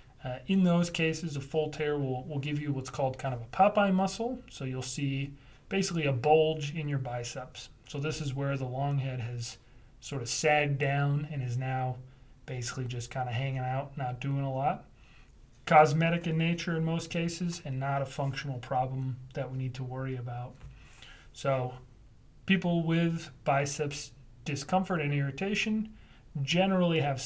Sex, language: male, English